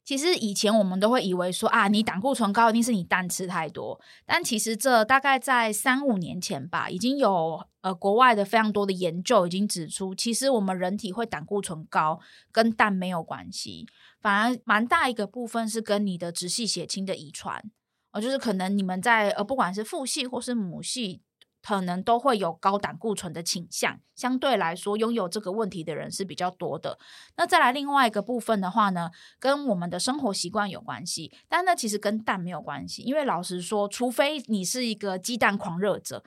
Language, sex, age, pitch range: Chinese, female, 20-39, 180-235 Hz